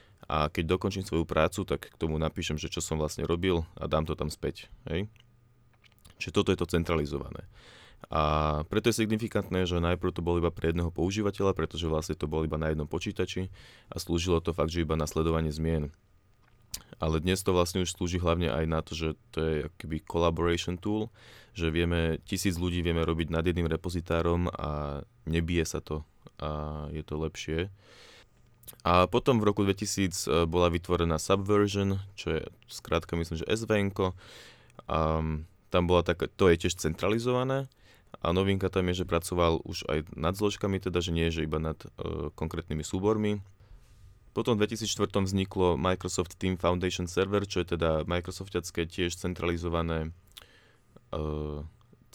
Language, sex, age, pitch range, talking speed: Slovak, male, 20-39, 80-100 Hz, 160 wpm